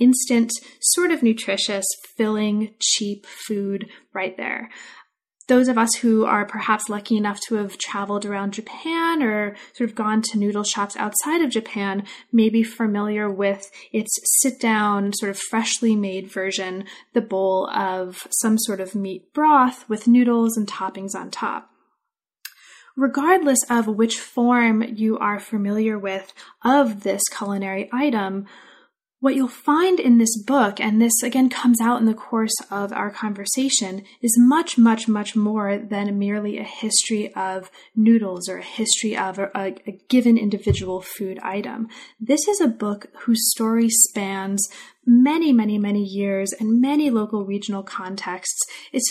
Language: English